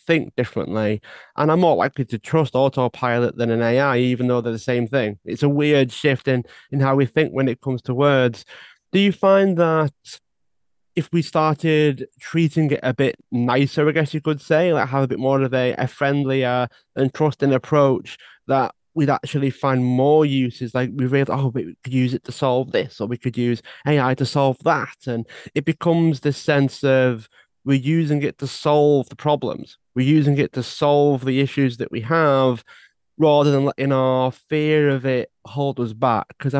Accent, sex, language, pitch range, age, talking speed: British, male, English, 125-145 Hz, 30-49, 190 wpm